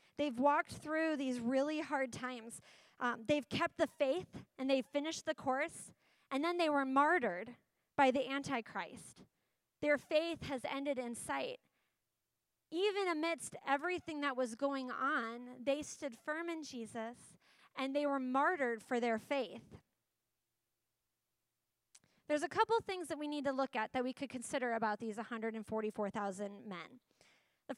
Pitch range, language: 240-300 Hz, English